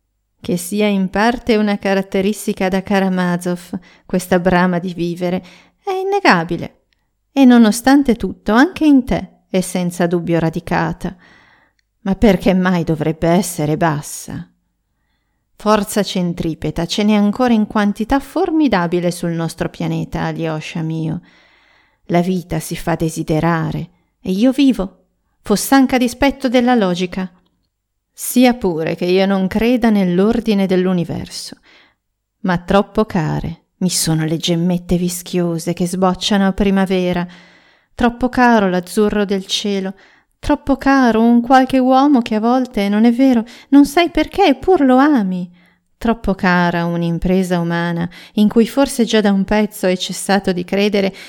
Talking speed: 130 wpm